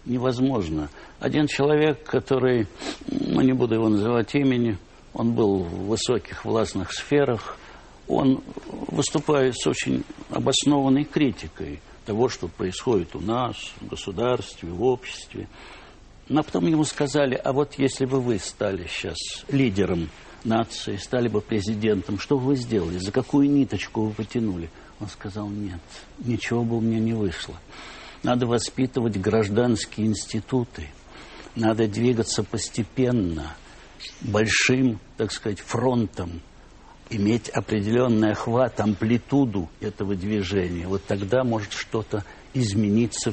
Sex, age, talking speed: male, 60-79, 120 wpm